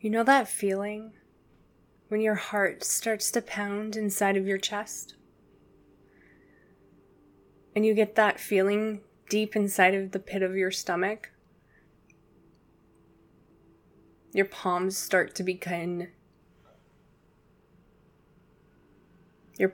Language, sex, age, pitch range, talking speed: English, female, 20-39, 185-220 Hz, 100 wpm